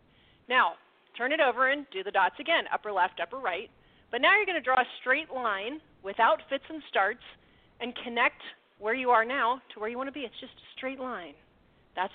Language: English